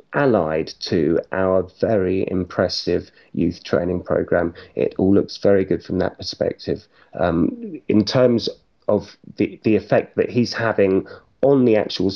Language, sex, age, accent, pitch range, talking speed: English, male, 30-49, British, 110-140 Hz, 145 wpm